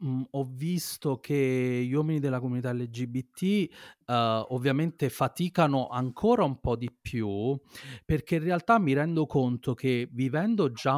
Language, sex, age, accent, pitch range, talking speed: Italian, male, 30-49, native, 115-140 Hz, 130 wpm